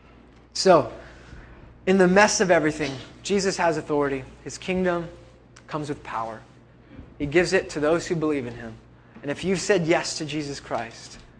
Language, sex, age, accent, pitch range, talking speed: English, male, 20-39, American, 130-175 Hz, 165 wpm